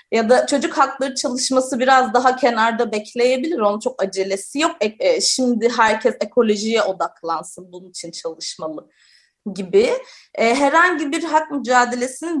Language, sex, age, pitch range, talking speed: Turkish, female, 30-49, 210-290 Hz, 120 wpm